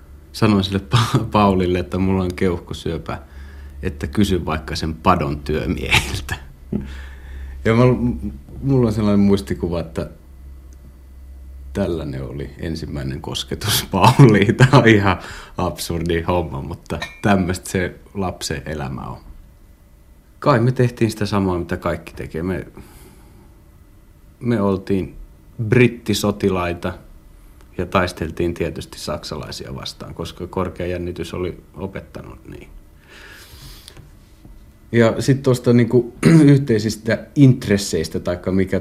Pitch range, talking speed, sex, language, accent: 75-100 Hz, 100 wpm, male, Finnish, native